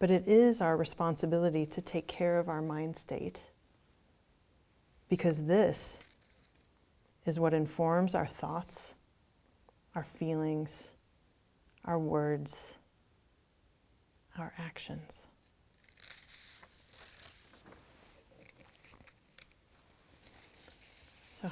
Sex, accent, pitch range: female, American, 150-170 Hz